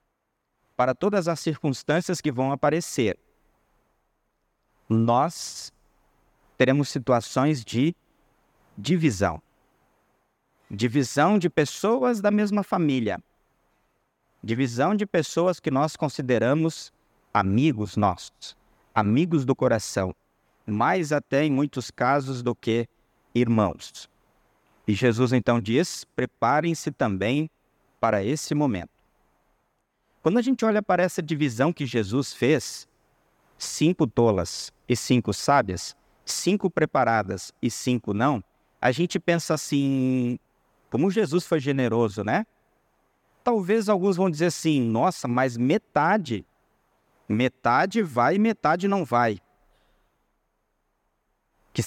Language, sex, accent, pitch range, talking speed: Portuguese, male, Brazilian, 120-175 Hz, 105 wpm